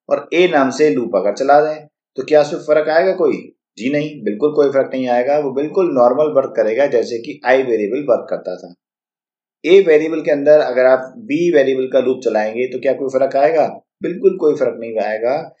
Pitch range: 125-175 Hz